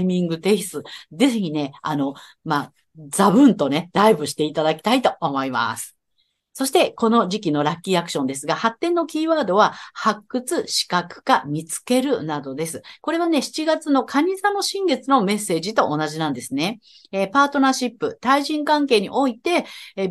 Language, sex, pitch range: Japanese, female, 160-275 Hz